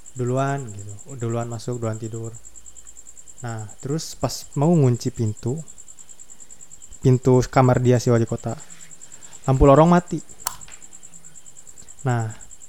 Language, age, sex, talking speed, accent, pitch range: Indonesian, 20-39, male, 105 wpm, native, 115-140 Hz